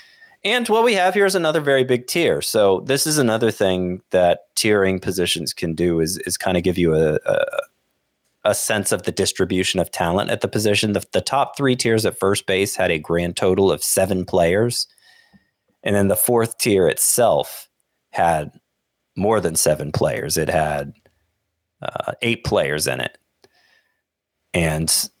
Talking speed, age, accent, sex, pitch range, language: 165 wpm, 30-49, American, male, 90-125 Hz, English